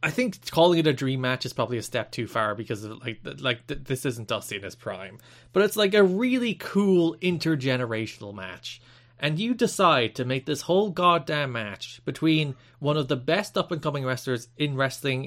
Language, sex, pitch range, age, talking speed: English, male, 120-165 Hz, 20-39, 200 wpm